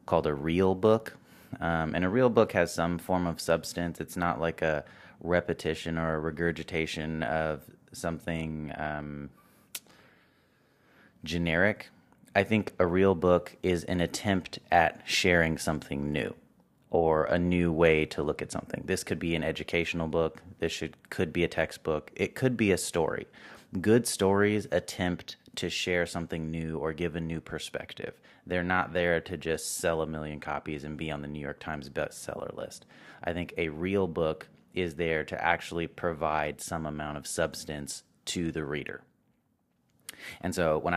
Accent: American